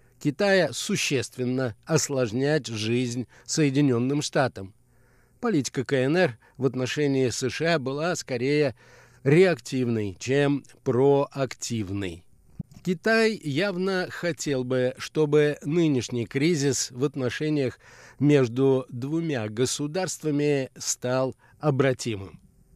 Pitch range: 125-155 Hz